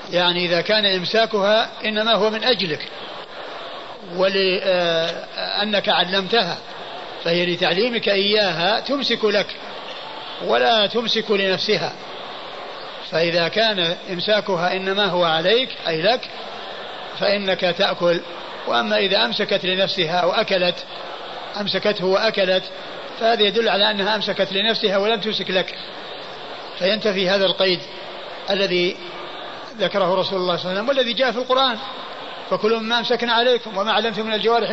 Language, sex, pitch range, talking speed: Arabic, male, 185-225 Hz, 115 wpm